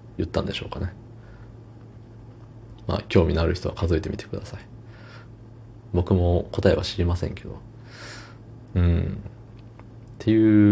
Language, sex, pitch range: Japanese, male, 95-115 Hz